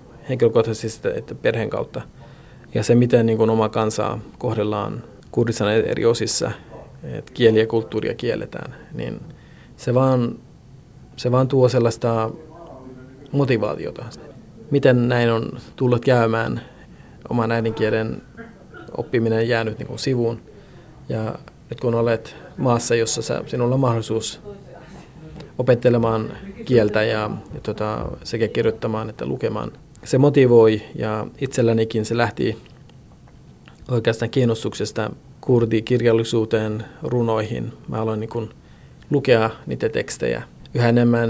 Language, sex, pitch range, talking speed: Finnish, male, 110-130 Hz, 105 wpm